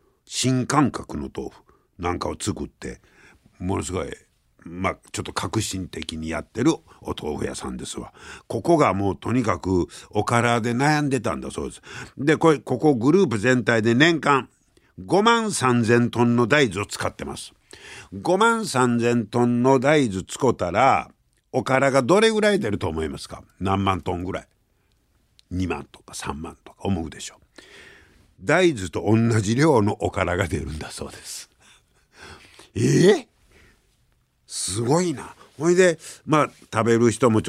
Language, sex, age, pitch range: Japanese, male, 60-79, 95-150 Hz